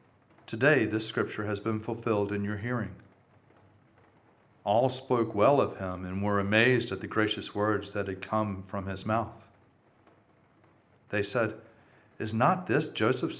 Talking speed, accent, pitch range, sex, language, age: 150 wpm, American, 95-115 Hz, male, English, 40-59